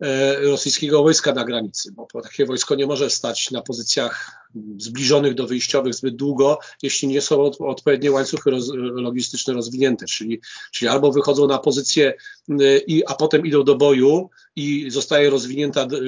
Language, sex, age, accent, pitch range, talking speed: Polish, male, 40-59, native, 140-165 Hz, 140 wpm